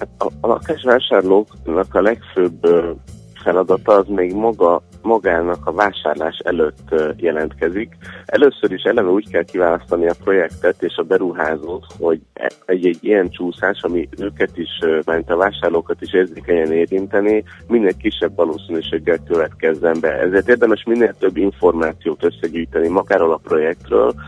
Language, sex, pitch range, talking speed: Hungarian, male, 85-105 Hz, 125 wpm